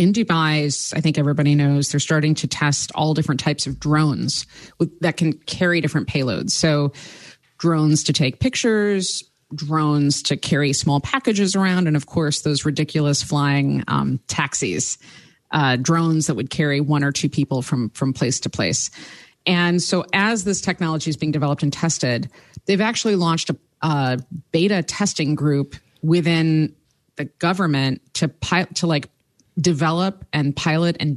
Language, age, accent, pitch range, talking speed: English, 30-49, American, 145-185 Hz, 160 wpm